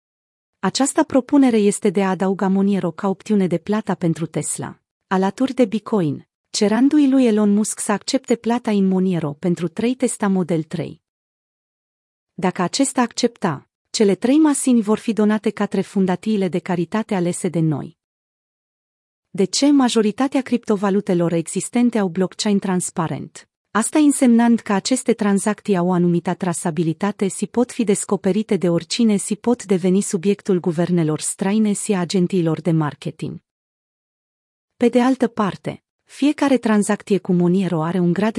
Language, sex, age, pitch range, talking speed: Romanian, female, 30-49, 180-230 Hz, 145 wpm